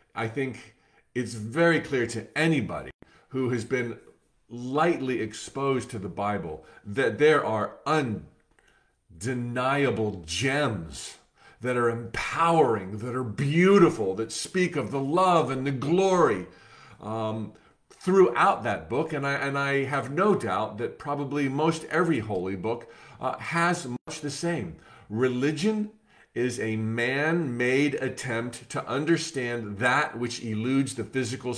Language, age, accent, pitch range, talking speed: English, 40-59, American, 120-160 Hz, 130 wpm